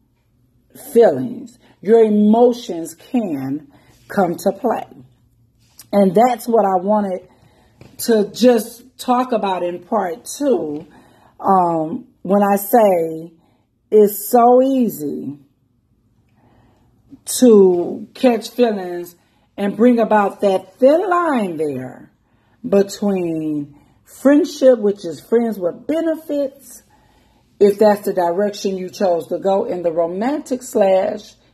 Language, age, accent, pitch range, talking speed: English, 40-59, American, 170-240 Hz, 105 wpm